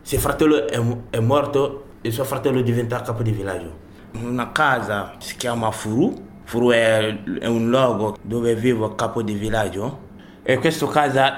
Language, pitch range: Italian, 110-145 Hz